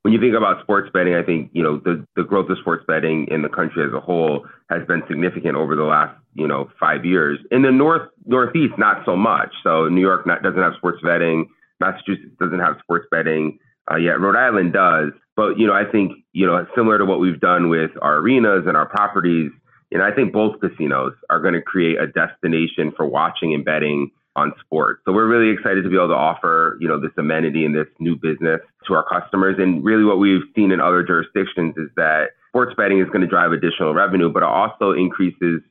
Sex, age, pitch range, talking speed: male, 30-49, 80-95 Hz, 230 wpm